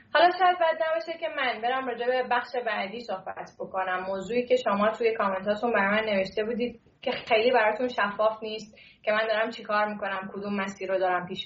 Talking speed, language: 200 wpm, Persian